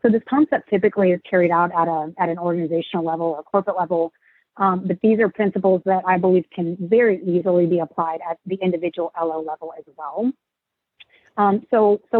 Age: 30-49